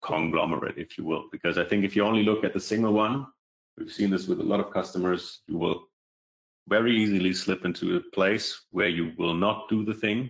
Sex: male